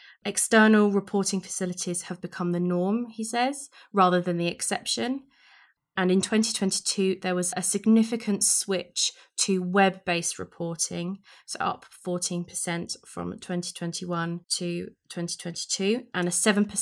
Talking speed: 110 wpm